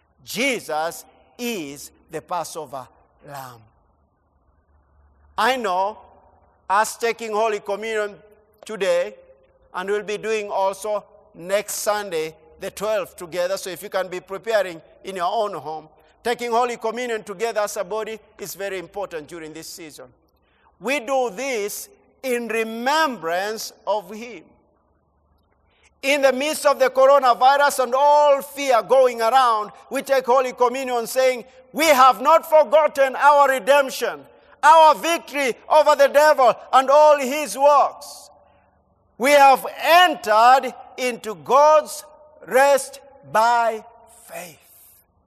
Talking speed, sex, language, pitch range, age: 120 wpm, male, English, 195-275 Hz, 50-69